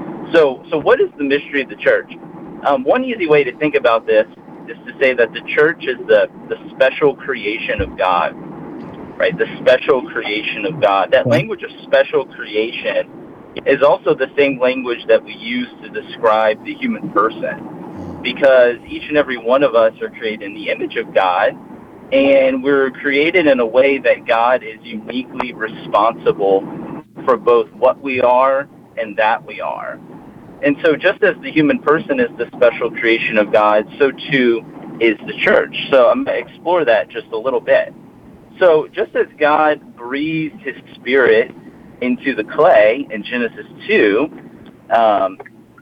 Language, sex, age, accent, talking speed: English, male, 40-59, American, 170 wpm